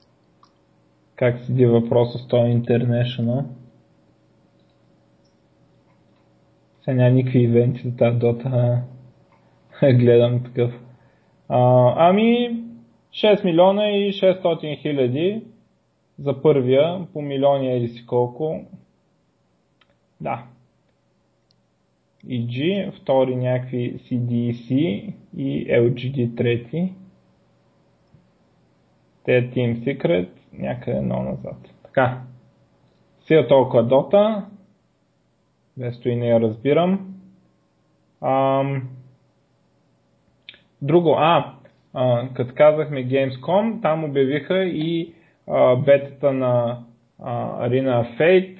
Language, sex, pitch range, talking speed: Bulgarian, male, 120-155 Hz, 90 wpm